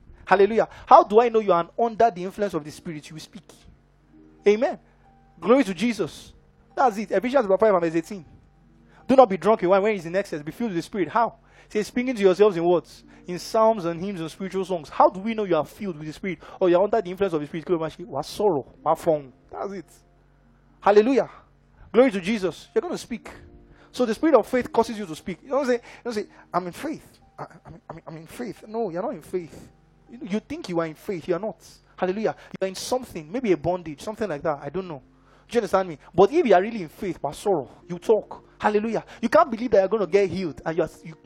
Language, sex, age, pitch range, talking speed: English, male, 20-39, 160-220 Hz, 240 wpm